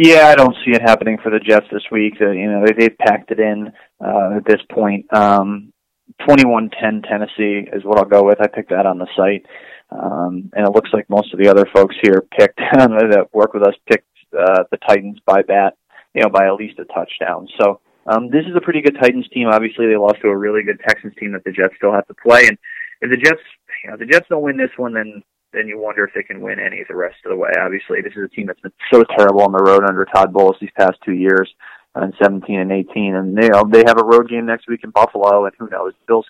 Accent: American